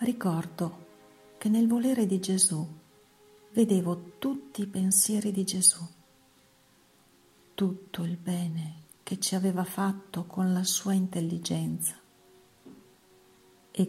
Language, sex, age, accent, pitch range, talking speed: Italian, female, 50-69, native, 155-190 Hz, 105 wpm